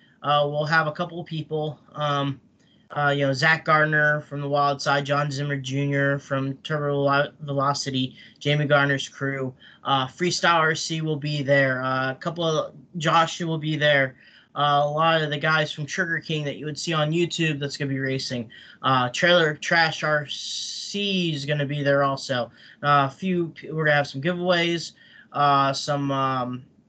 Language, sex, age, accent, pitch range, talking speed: English, male, 20-39, American, 140-160 Hz, 180 wpm